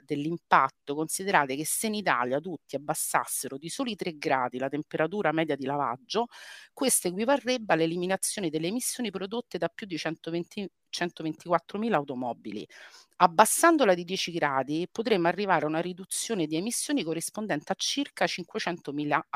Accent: native